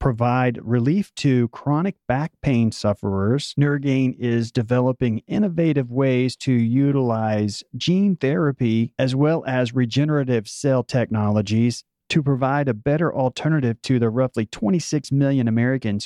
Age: 40-59